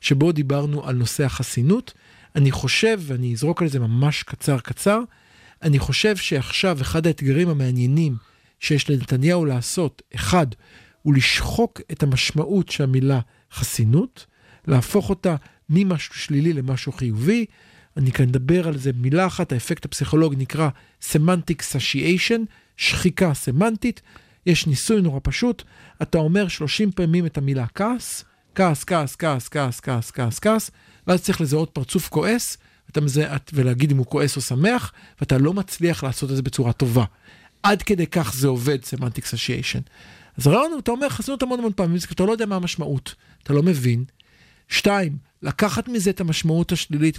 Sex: male